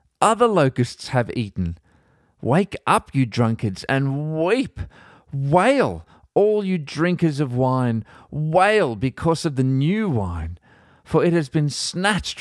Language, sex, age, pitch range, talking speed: English, male, 40-59, 100-135 Hz, 130 wpm